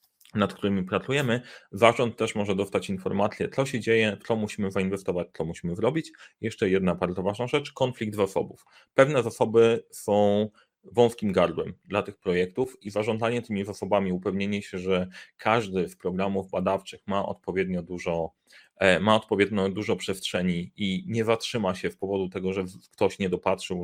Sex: male